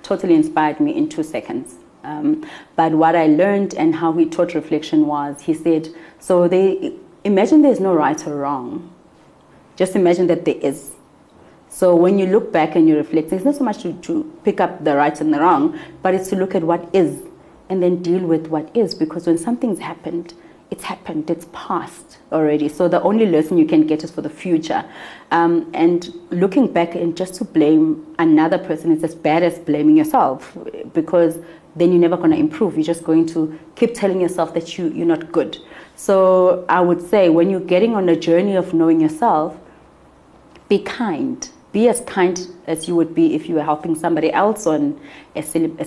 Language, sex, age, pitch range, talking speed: English, female, 30-49, 160-210 Hz, 195 wpm